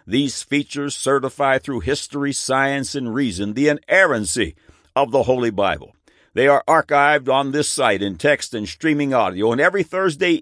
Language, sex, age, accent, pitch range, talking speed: English, male, 60-79, American, 105-145 Hz, 160 wpm